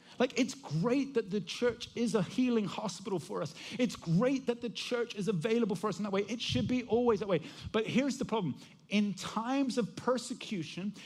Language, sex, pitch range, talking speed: English, male, 190-245 Hz, 205 wpm